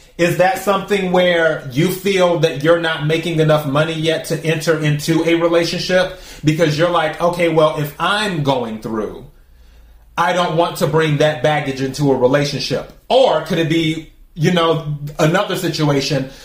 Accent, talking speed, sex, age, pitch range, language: American, 165 wpm, male, 30-49, 150-180 Hz, English